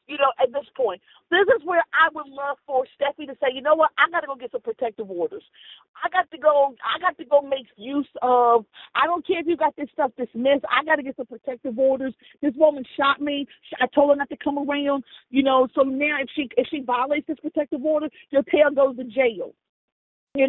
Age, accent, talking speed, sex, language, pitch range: 40-59, American, 240 wpm, female, English, 250-315 Hz